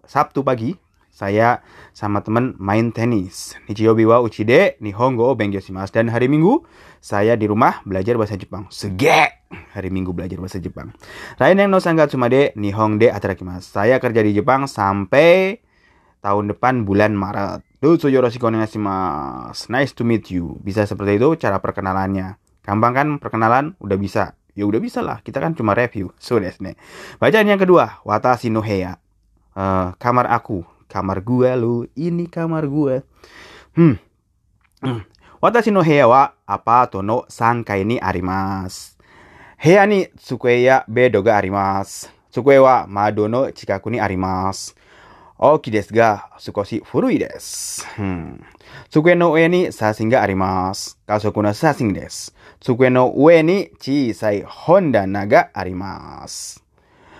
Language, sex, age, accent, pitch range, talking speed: Indonesian, male, 20-39, native, 95-125 Hz, 135 wpm